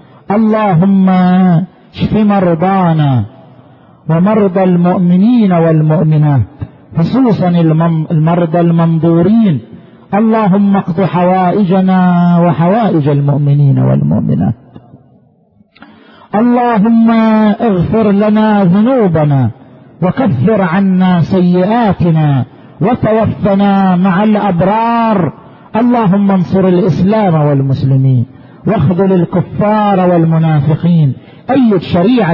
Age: 50-69